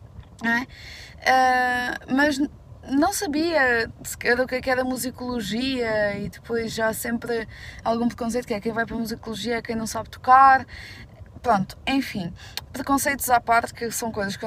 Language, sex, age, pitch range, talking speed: Portuguese, female, 20-39, 225-255 Hz, 160 wpm